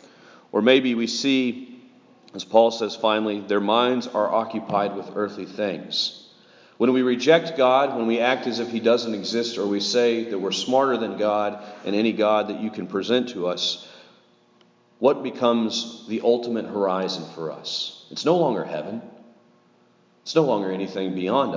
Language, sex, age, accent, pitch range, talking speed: English, male, 40-59, American, 95-115 Hz, 165 wpm